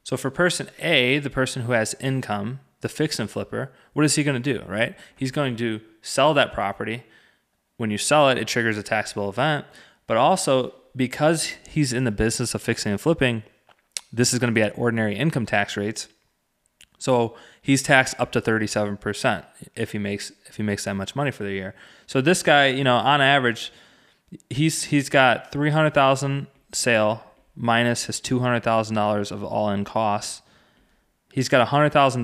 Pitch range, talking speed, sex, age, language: 110-140 Hz, 190 wpm, male, 20-39, English